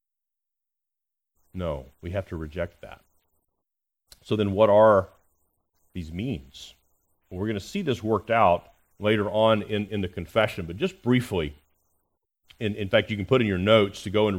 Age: 40-59